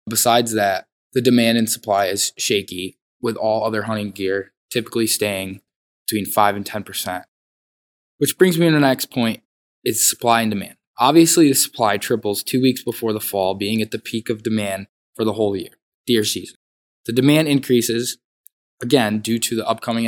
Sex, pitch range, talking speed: male, 100-120 Hz, 180 wpm